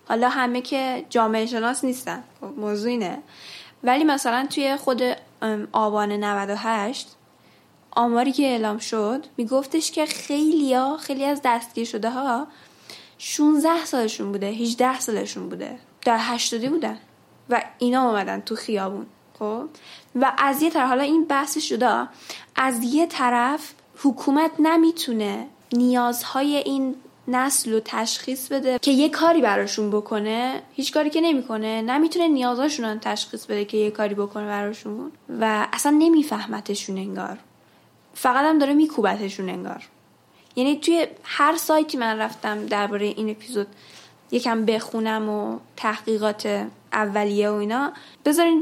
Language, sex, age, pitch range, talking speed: Persian, female, 10-29, 220-280 Hz, 130 wpm